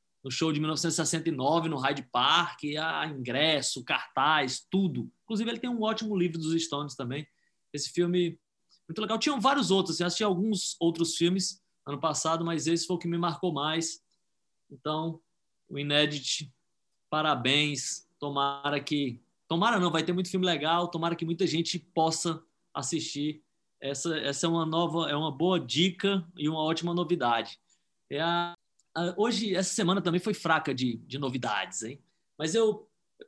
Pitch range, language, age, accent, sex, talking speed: 145-180 Hz, Portuguese, 20-39, Brazilian, male, 165 wpm